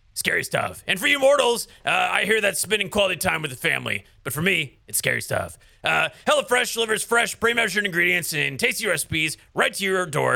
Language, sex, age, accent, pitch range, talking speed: English, male, 30-49, American, 170-235 Hz, 210 wpm